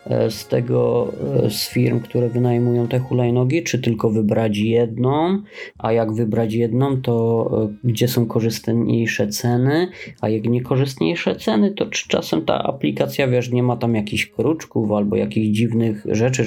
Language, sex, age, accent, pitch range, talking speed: Polish, male, 20-39, native, 110-125 Hz, 145 wpm